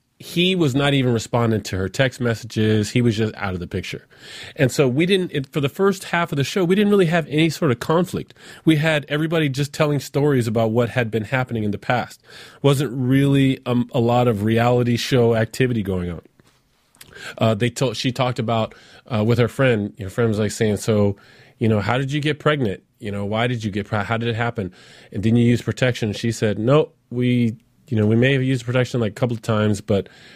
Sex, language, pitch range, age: male, English, 110-135 Hz, 30-49